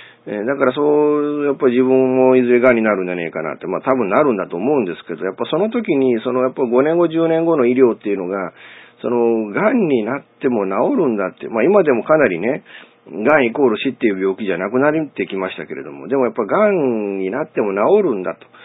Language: Japanese